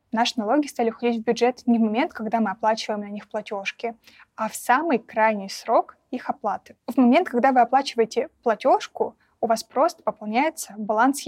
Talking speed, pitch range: 175 wpm, 225-260 Hz